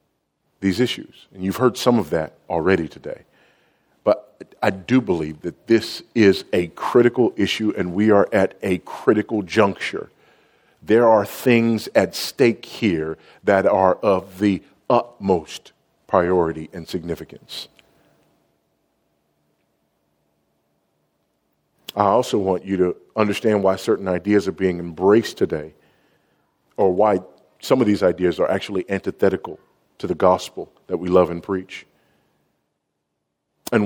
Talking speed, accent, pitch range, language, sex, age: 130 wpm, American, 80-105 Hz, English, male, 40-59